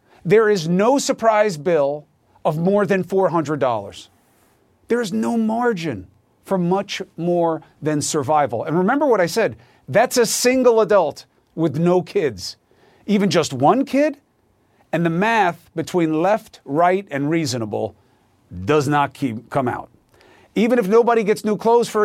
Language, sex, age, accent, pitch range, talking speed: English, male, 40-59, American, 160-240 Hz, 145 wpm